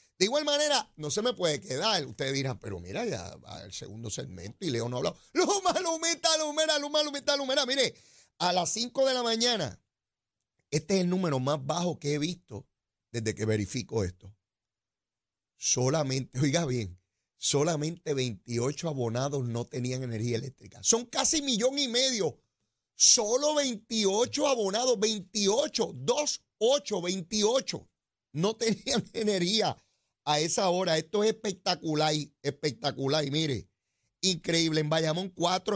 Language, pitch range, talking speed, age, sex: Spanish, 125-205 Hz, 145 wpm, 30-49, male